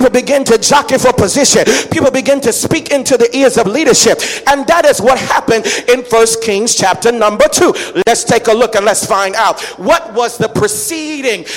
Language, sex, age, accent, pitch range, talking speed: English, male, 40-59, American, 195-280 Hz, 190 wpm